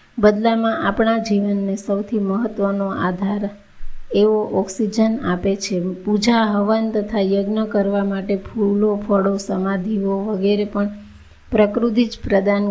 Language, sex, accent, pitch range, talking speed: Gujarati, female, native, 195-220 Hz, 105 wpm